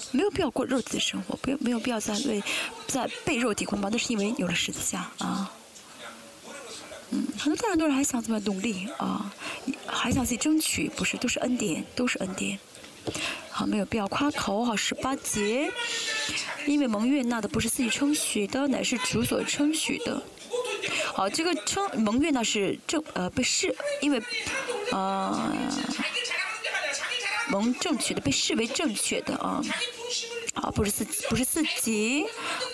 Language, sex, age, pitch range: Chinese, female, 20-39, 230-315 Hz